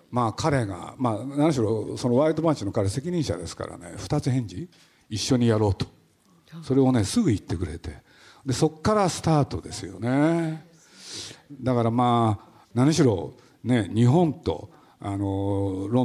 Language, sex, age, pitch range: Japanese, male, 50-69, 100-150 Hz